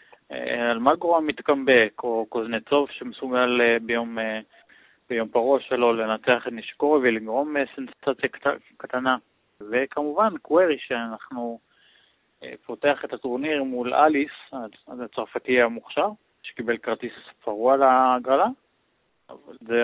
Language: Hebrew